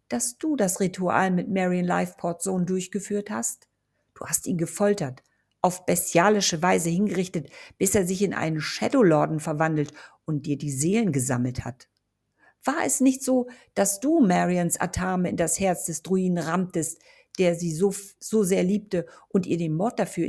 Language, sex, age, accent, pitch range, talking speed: German, female, 50-69, German, 160-195 Hz, 170 wpm